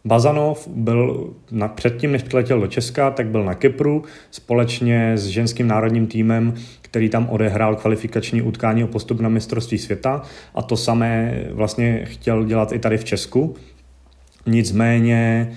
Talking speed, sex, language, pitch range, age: 145 wpm, male, Czech, 105-115 Hz, 30-49